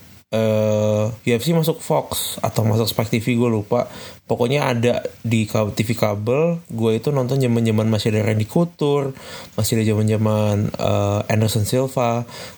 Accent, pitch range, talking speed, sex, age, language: native, 110-125 Hz, 155 wpm, male, 20-39, Indonesian